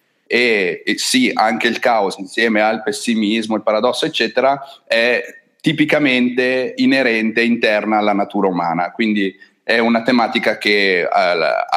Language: Italian